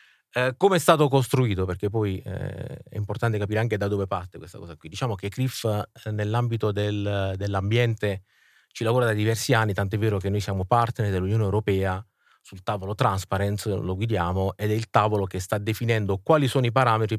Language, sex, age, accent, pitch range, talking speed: Italian, male, 30-49, native, 100-120 Hz, 185 wpm